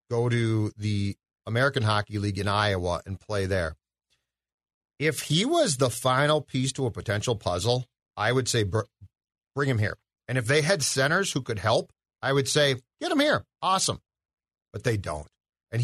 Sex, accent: male, American